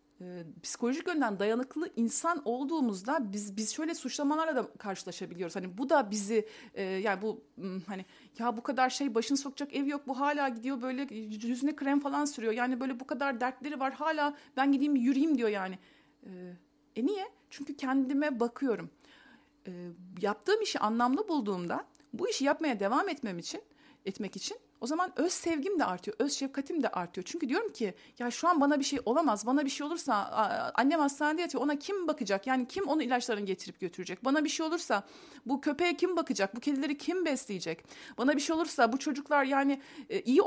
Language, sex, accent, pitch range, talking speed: Turkish, female, native, 225-295 Hz, 180 wpm